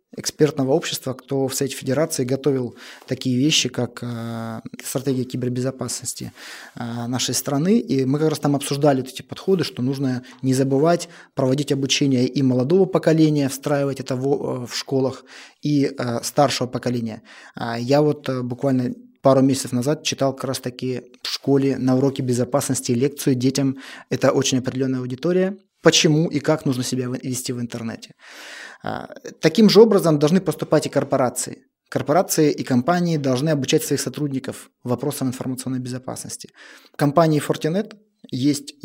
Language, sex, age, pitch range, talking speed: Russian, male, 20-39, 125-150 Hz, 135 wpm